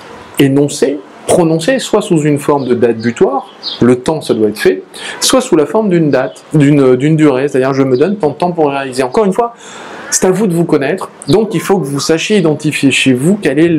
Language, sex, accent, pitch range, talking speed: French, male, French, 130-175 Hz, 230 wpm